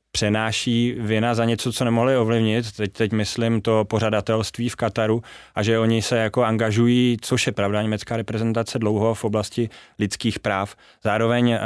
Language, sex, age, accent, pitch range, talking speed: Czech, male, 20-39, native, 105-115 Hz, 160 wpm